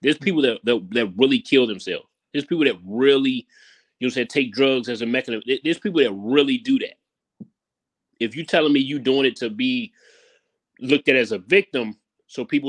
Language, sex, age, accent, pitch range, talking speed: English, male, 30-49, American, 120-170 Hz, 200 wpm